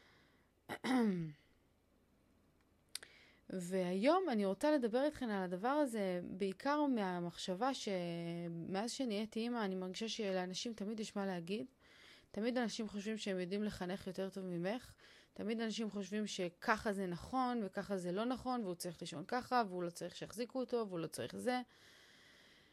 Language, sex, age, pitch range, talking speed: Hebrew, female, 30-49, 180-225 Hz, 135 wpm